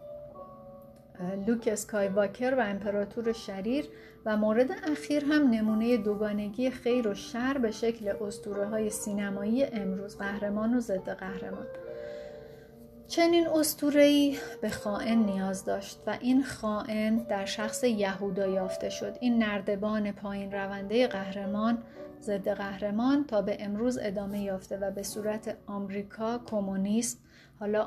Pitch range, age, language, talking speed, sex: 200-235 Hz, 30-49, Persian, 120 wpm, female